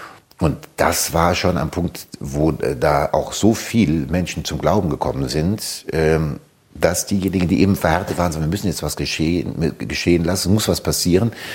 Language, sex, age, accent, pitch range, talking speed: German, male, 60-79, German, 75-105 Hz, 170 wpm